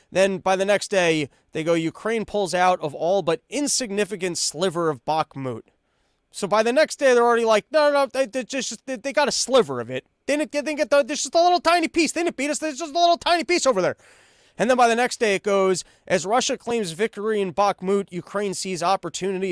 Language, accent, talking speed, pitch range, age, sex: English, American, 245 wpm, 170-235 Hz, 30-49, male